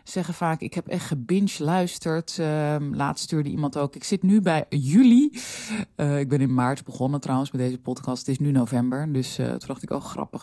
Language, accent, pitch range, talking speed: Dutch, Dutch, 130-170 Hz, 220 wpm